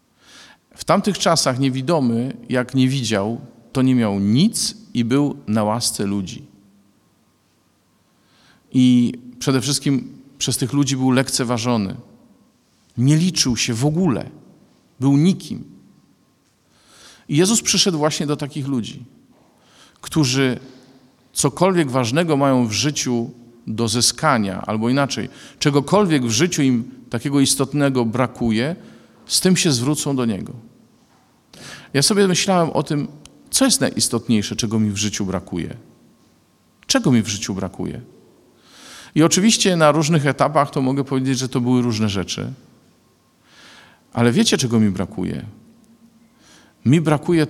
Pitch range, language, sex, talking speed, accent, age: 120-150 Hz, Polish, male, 125 wpm, native, 50-69